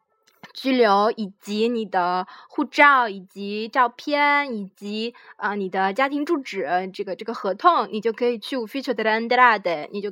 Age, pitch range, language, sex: 20-39, 215-305 Hz, Chinese, female